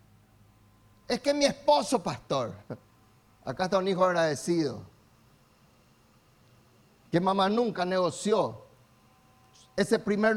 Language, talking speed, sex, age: Spanish, 95 wpm, male, 40-59